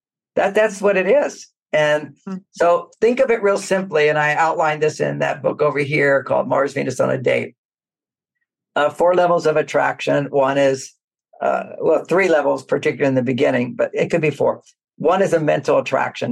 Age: 50-69